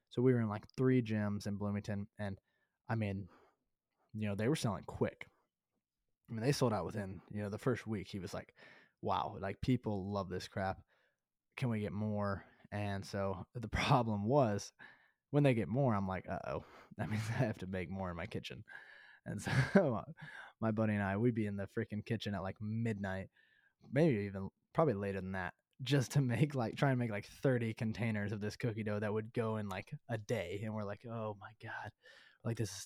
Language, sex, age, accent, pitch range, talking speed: English, male, 20-39, American, 100-120 Hz, 210 wpm